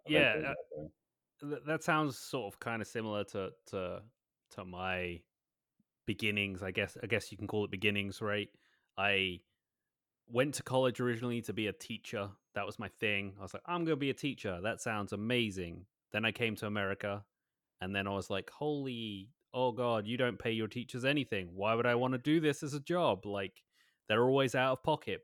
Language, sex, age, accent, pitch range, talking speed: English, male, 20-39, British, 95-120 Hz, 195 wpm